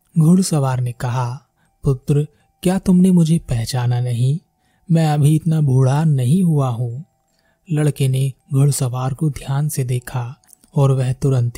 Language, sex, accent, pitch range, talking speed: Hindi, male, native, 135-160 Hz, 135 wpm